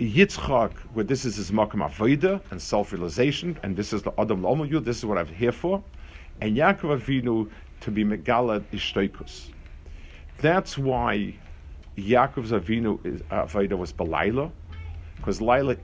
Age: 50-69